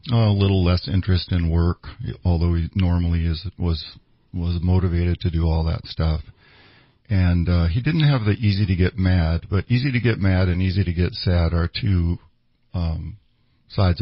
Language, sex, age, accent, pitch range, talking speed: English, male, 50-69, American, 85-105 Hz, 180 wpm